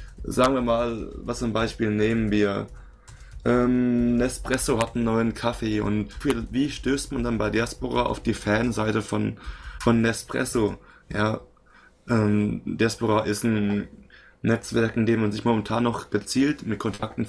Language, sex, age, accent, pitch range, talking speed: German, male, 20-39, German, 100-115 Hz, 150 wpm